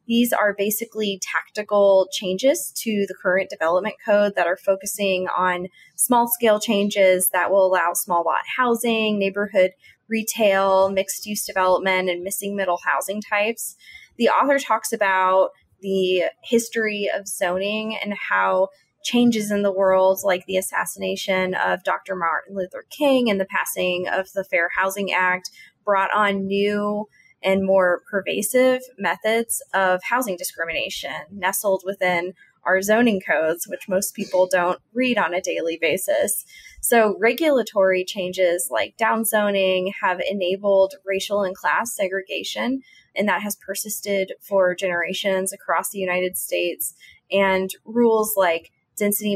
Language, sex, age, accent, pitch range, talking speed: English, female, 20-39, American, 185-215 Hz, 135 wpm